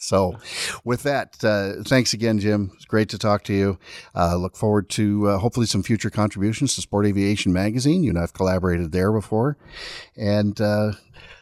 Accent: American